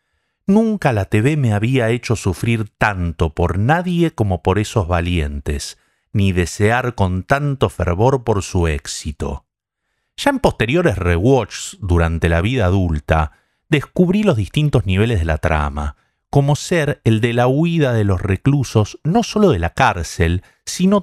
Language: Spanish